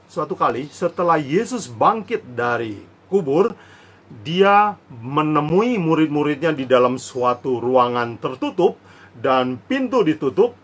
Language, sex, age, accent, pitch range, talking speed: Indonesian, male, 40-59, native, 120-170 Hz, 100 wpm